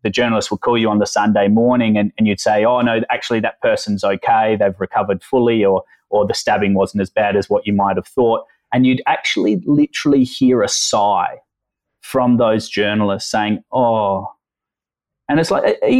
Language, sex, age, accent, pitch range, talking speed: English, male, 20-39, Australian, 110-150 Hz, 190 wpm